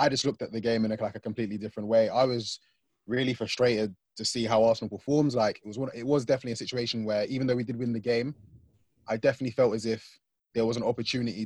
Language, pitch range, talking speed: English, 115-140 Hz, 245 wpm